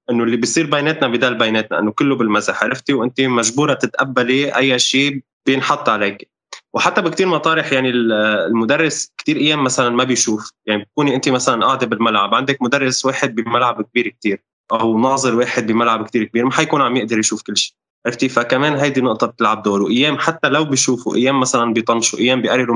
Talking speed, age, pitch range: 175 wpm, 20-39, 115-135 Hz